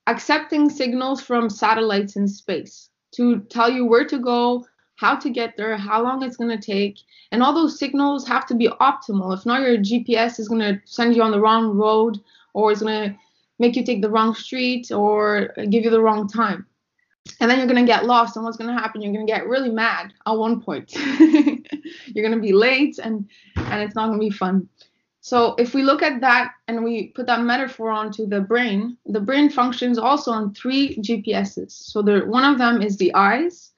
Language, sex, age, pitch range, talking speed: English, female, 20-39, 220-255 Hz, 215 wpm